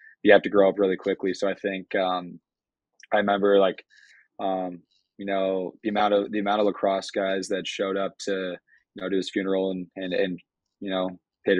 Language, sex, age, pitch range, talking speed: English, male, 20-39, 90-100 Hz, 205 wpm